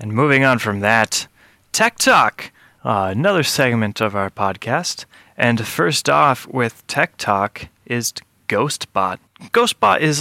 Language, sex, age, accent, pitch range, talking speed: English, male, 20-39, American, 105-130 Hz, 135 wpm